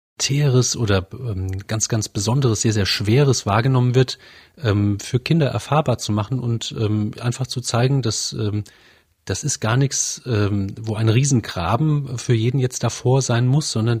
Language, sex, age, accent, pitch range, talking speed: German, male, 40-59, German, 105-130 Hz, 140 wpm